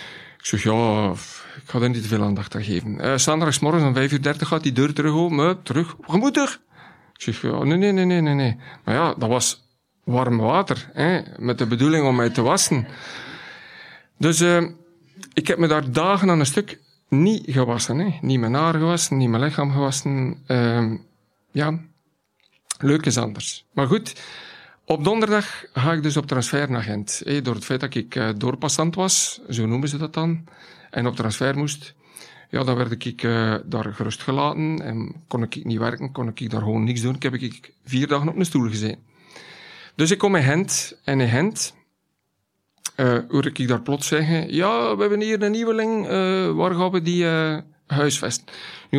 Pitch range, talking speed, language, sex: 125-165 Hz, 195 wpm, Dutch, male